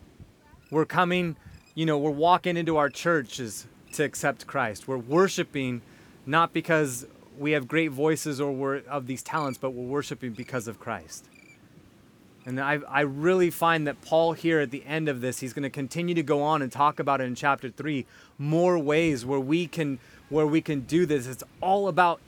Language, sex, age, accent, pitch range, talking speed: English, male, 30-49, American, 130-160 Hz, 190 wpm